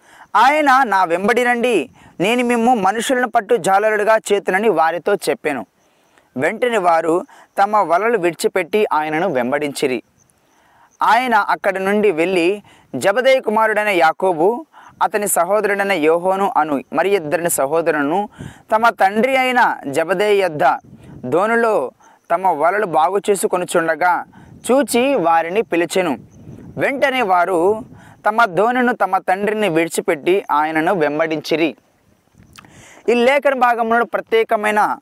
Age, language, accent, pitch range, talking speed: 20-39, Telugu, native, 175-230 Hz, 100 wpm